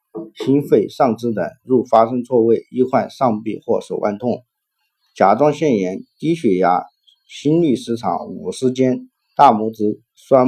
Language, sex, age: Chinese, male, 50-69